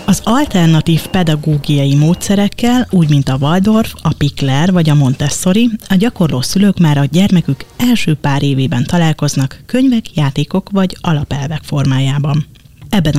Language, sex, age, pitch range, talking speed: Hungarian, female, 30-49, 140-180 Hz, 130 wpm